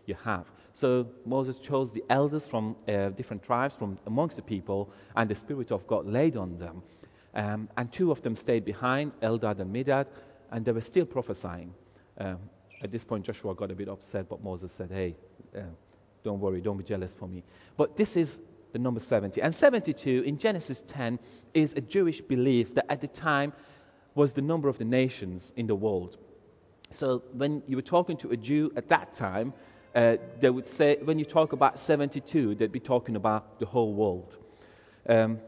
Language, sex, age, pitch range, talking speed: English, male, 30-49, 105-140 Hz, 195 wpm